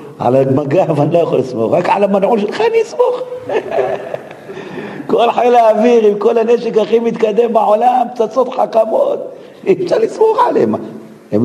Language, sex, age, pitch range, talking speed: Hebrew, male, 50-69, 180-290 Hz, 135 wpm